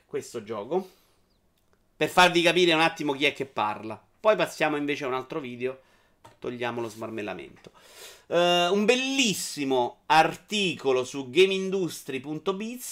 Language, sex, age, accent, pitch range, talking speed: Italian, male, 30-49, native, 125-190 Hz, 120 wpm